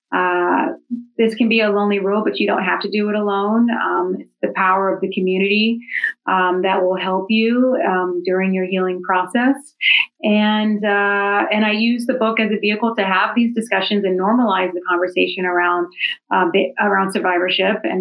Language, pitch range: English, 185-220 Hz